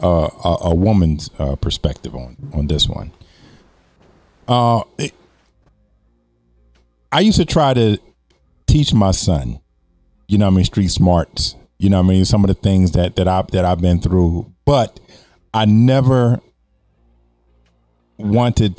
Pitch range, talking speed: 85-120 Hz, 150 wpm